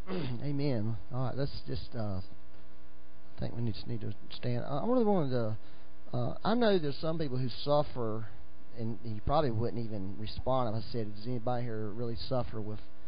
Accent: American